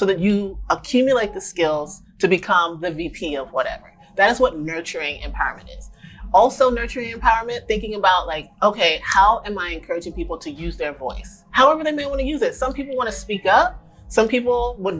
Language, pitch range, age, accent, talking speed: English, 170-225 Hz, 30-49, American, 200 wpm